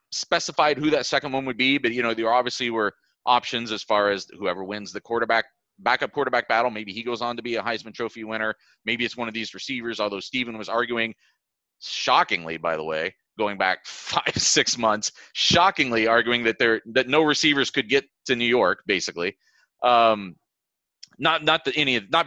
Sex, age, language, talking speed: male, 30-49, English, 195 wpm